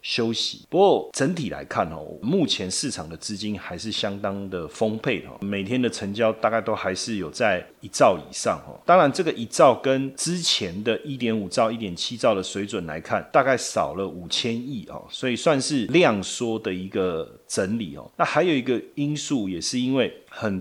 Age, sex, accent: 30-49, male, native